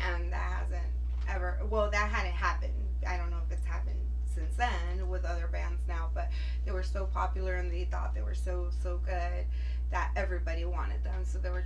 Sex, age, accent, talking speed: female, 20-39, American, 205 wpm